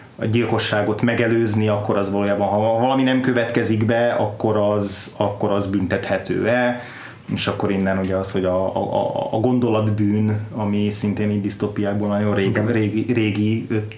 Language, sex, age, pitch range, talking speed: Hungarian, male, 20-39, 100-115 Hz, 150 wpm